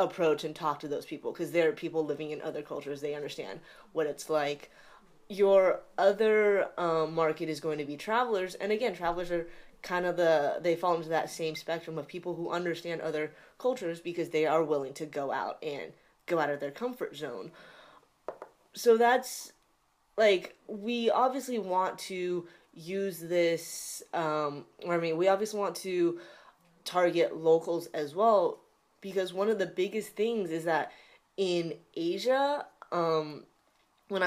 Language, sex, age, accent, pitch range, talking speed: English, female, 20-39, American, 160-195 Hz, 165 wpm